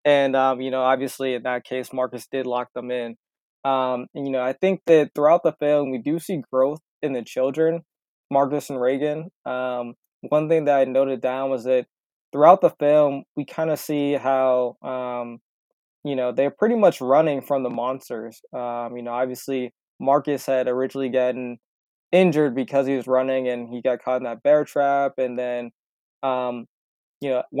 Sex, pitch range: male, 125-145 Hz